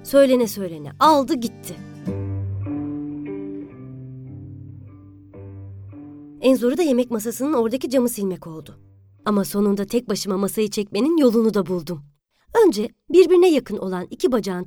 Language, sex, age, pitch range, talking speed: Turkish, male, 30-49, 180-280 Hz, 115 wpm